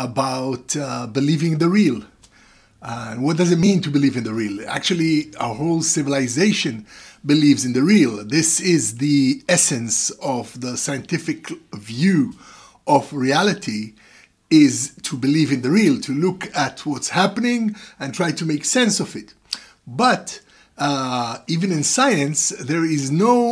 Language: English